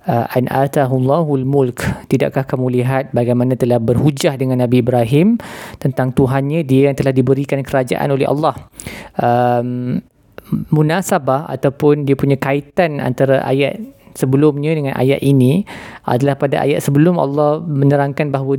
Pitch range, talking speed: 130-155 Hz, 130 wpm